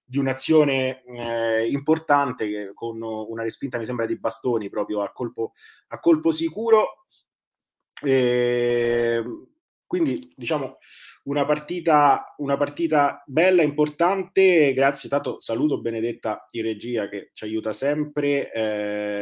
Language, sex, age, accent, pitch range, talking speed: Italian, male, 30-49, native, 105-140 Hz, 115 wpm